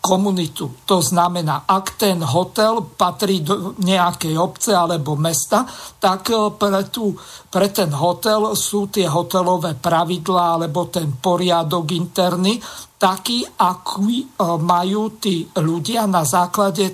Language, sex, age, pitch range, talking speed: Slovak, male, 50-69, 170-195 Hz, 115 wpm